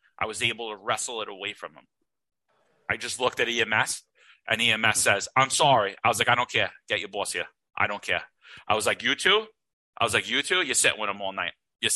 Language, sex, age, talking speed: English, male, 30-49, 245 wpm